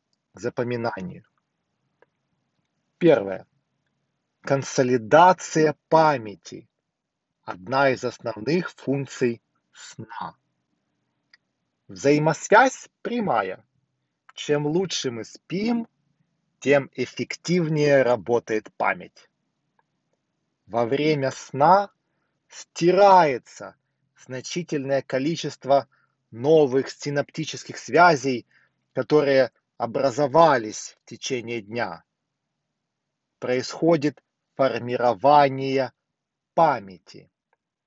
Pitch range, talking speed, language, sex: 125-160 Hz, 55 wpm, Russian, male